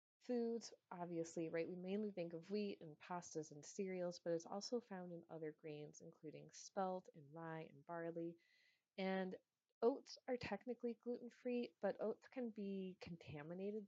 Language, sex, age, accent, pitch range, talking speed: English, female, 30-49, American, 165-195 Hz, 150 wpm